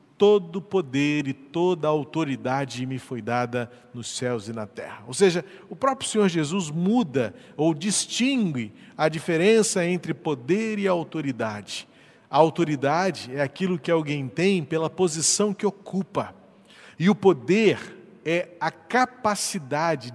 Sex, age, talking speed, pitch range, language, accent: male, 40-59, 135 wpm, 155-210 Hz, Portuguese, Brazilian